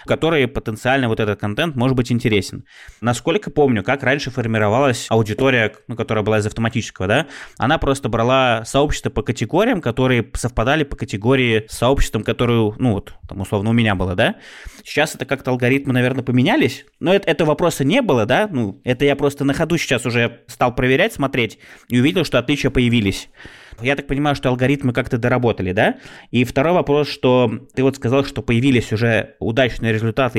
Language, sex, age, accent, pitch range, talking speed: Russian, male, 20-39, native, 110-135 Hz, 180 wpm